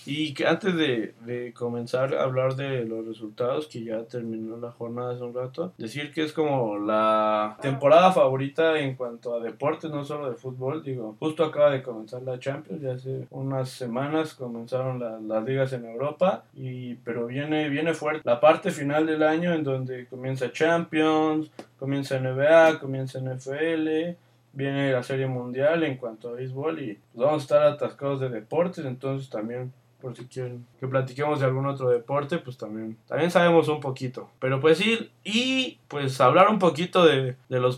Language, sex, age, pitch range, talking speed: Spanish, male, 20-39, 125-155 Hz, 180 wpm